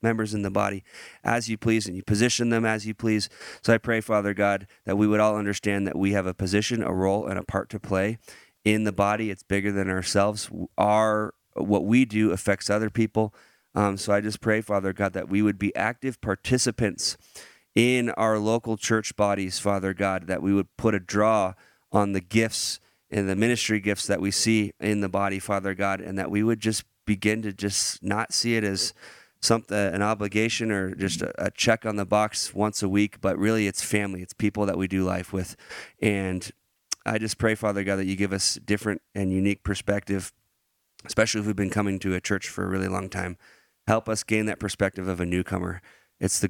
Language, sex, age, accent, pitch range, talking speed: English, male, 30-49, American, 95-110 Hz, 215 wpm